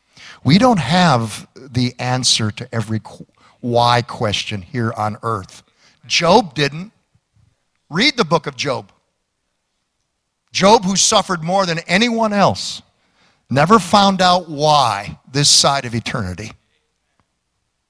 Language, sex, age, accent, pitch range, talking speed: English, male, 50-69, American, 130-185 Hz, 115 wpm